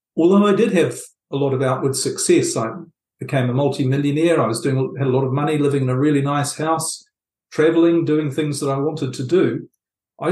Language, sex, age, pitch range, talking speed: English, male, 50-69, 135-175 Hz, 210 wpm